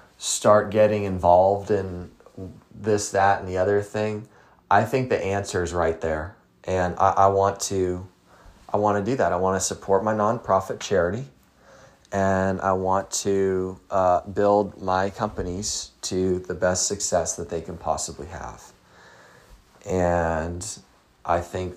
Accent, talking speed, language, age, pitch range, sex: American, 150 wpm, English, 30-49, 90-105 Hz, male